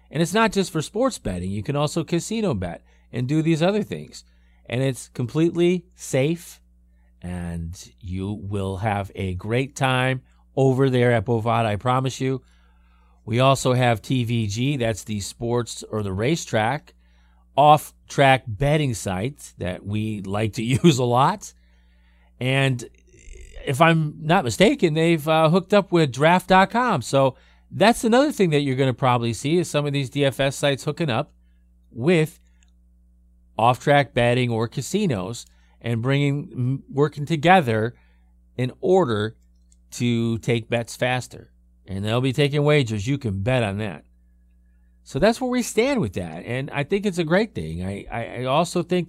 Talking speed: 155 wpm